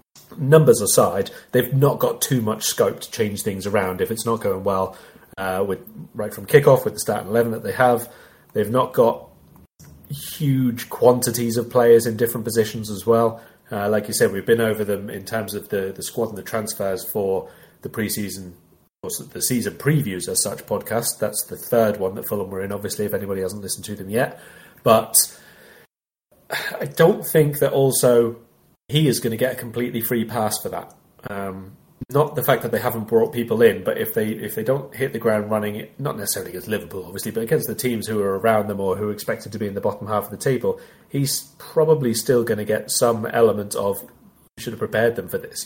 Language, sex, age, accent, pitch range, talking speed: English, male, 30-49, British, 105-125 Hz, 215 wpm